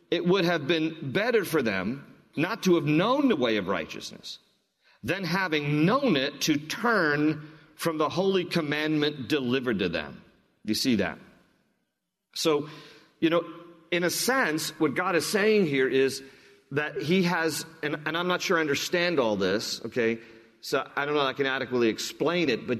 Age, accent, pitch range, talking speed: 40-59, American, 135-170 Hz, 175 wpm